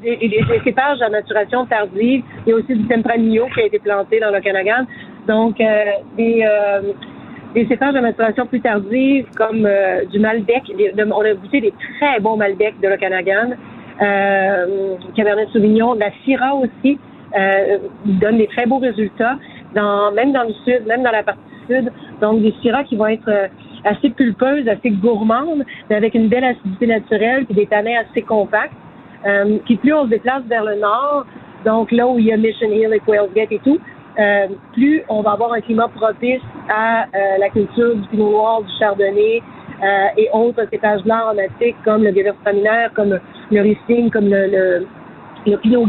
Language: French